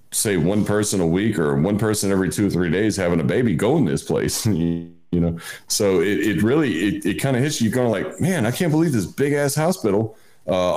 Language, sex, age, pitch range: English, male, 40-59, 80-110 Hz